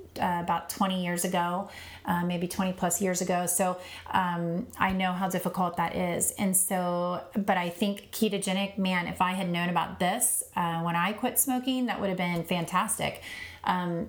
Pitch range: 175-230 Hz